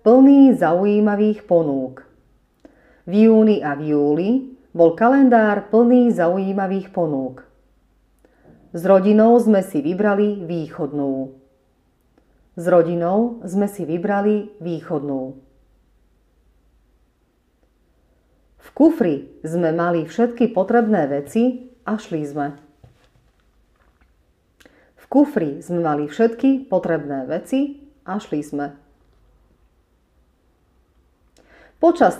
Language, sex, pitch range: Slovak, female, 145-225 Hz